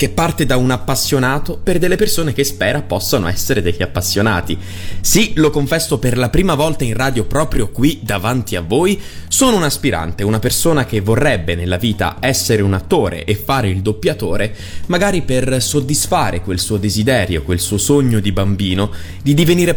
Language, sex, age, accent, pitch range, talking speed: Italian, male, 20-39, native, 100-135 Hz, 175 wpm